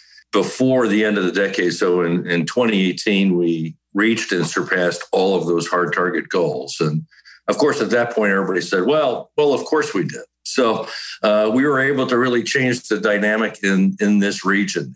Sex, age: male, 50-69